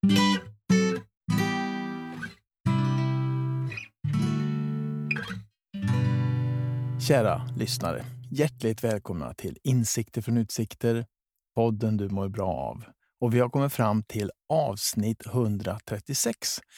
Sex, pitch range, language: male, 105-145 Hz, Swedish